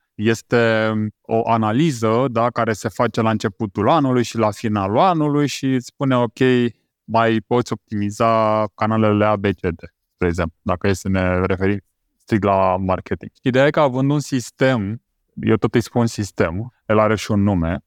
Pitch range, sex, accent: 100-120 Hz, male, native